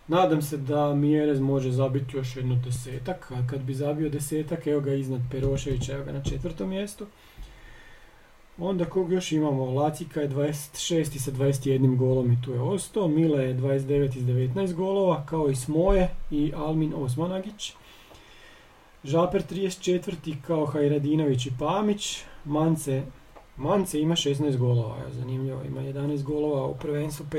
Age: 40-59